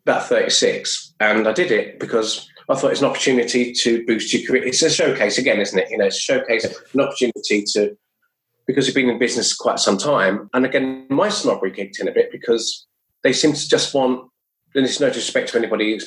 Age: 20-39